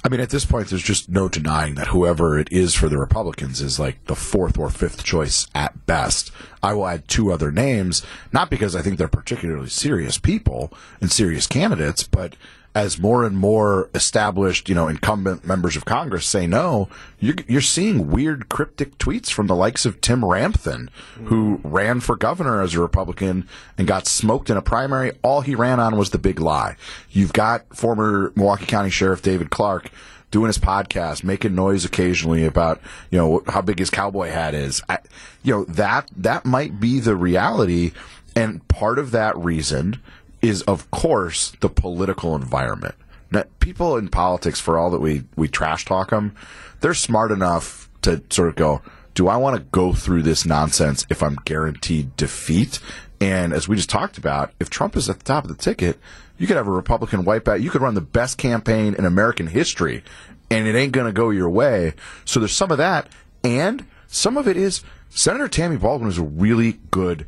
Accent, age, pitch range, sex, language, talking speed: American, 40-59, 80-110 Hz, male, English, 195 wpm